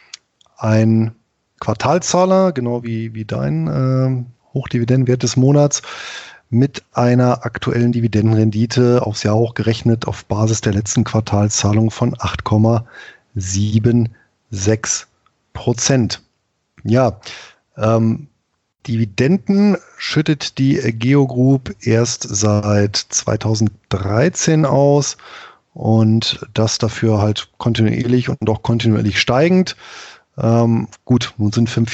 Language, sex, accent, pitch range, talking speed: German, male, German, 110-130 Hz, 90 wpm